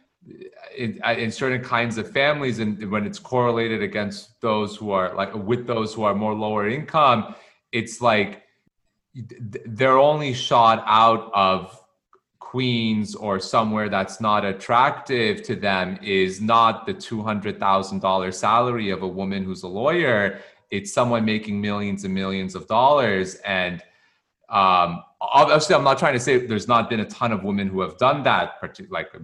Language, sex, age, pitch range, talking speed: English, male, 30-49, 95-115 Hz, 160 wpm